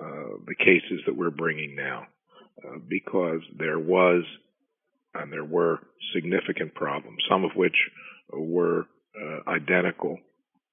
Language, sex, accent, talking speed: English, male, American, 125 wpm